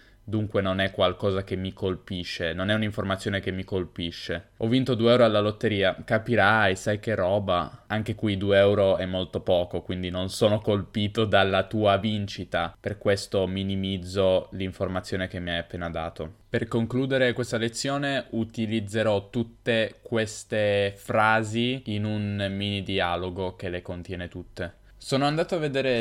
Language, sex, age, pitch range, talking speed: Italian, male, 10-29, 95-110 Hz, 150 wpm